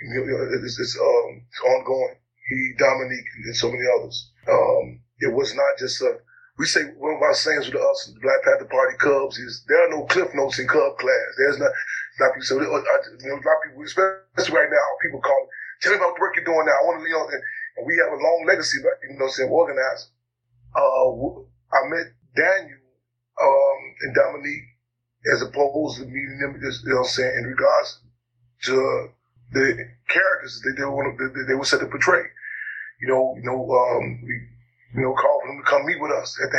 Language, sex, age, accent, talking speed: English, male, 20-39, American, 225 wpm